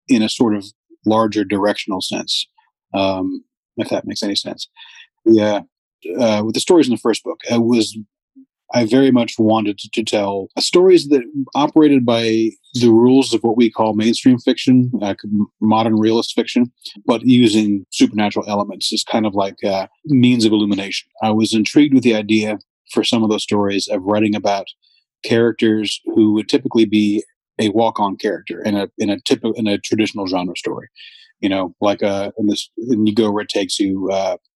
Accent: American